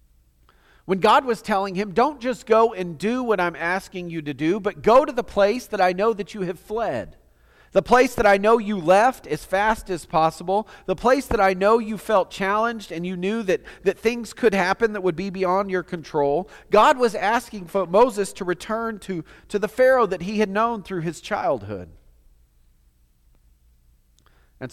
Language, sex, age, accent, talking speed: English, male, 40-59, American, 195 wpm